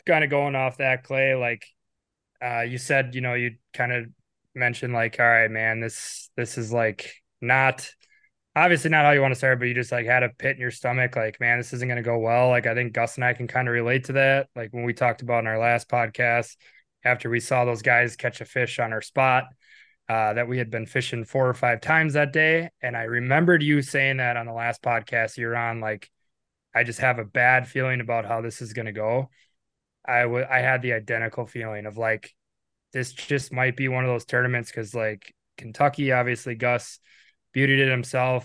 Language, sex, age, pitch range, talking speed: English, male, 20-39, 115-130 Hz, 225 wpm